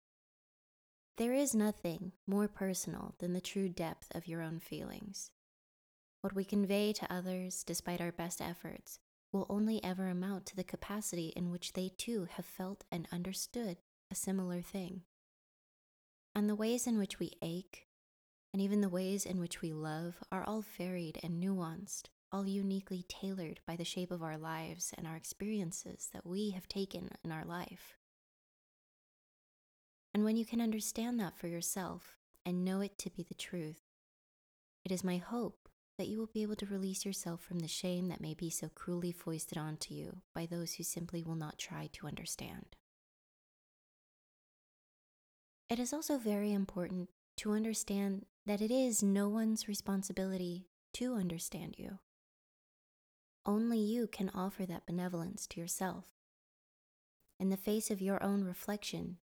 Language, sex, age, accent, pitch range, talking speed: English, female, 20-39, American, 175-205 Hz, 160 wpm